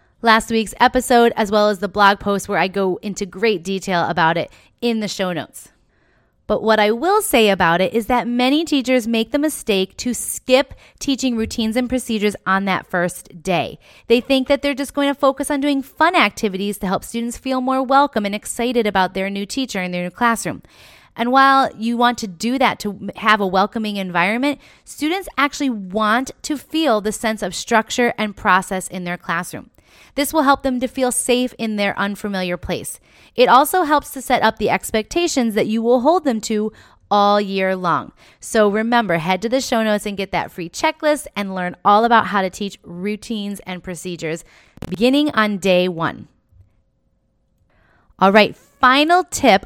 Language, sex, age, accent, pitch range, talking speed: English, female, 30-49, American, 195-260 Hz, 190 wpm